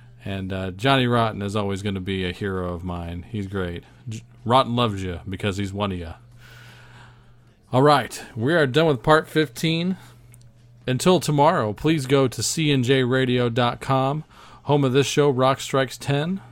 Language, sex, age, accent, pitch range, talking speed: English, male, 40-59, American, 115-140 Hz, 160 wpm